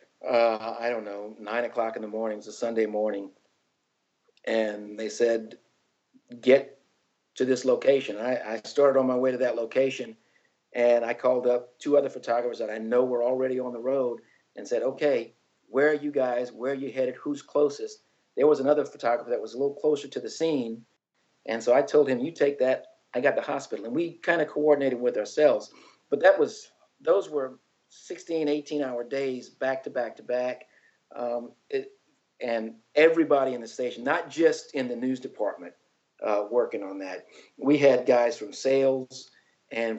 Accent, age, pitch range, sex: American, 50-69, 115-145 Hz, male